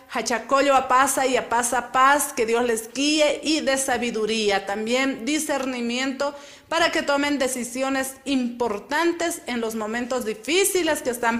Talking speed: 145 wpm